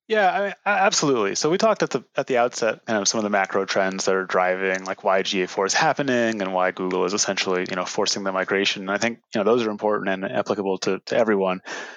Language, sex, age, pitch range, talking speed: English, male, 30-49, 95-115 Hz, 250 wpm